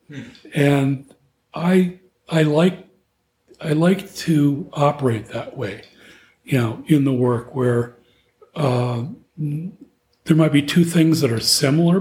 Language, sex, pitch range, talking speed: English, male, 120-150 Hz, 125 wpm